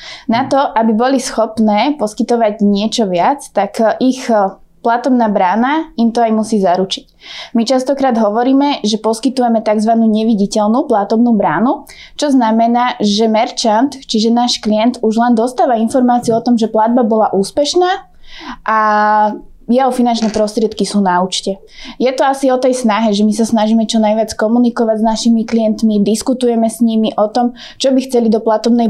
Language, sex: Slovak, female